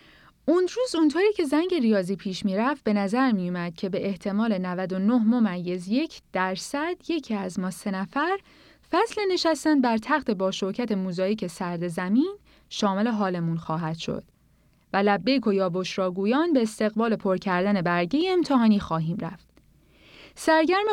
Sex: female